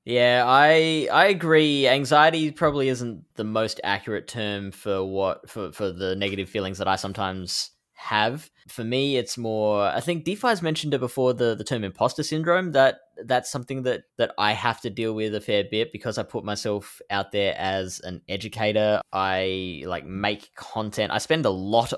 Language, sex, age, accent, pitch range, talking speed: English, male, 10-29, Australian, 95-125 Hz, 185 wpm